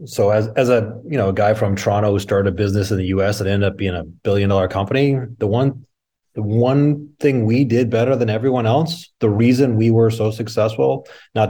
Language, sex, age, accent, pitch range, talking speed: English, male, 30-49, American, 105-140 Hz, 225 wpm